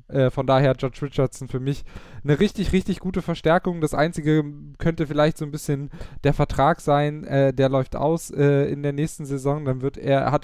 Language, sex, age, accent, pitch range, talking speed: German, male, 10-29, German, 130-155 Hz, 190 wpm